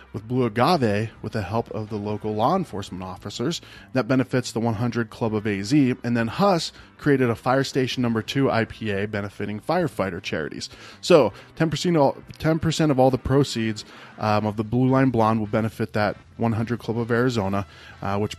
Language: English